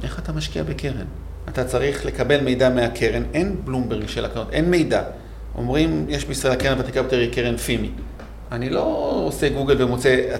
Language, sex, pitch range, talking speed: Hebrew, male, 120-145 Hz, 155 wpm